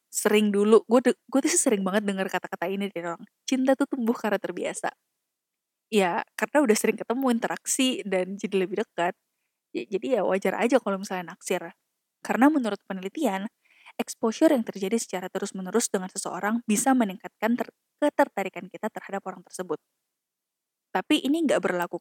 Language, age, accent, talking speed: Indonesian, 20-39, native, 160 wpm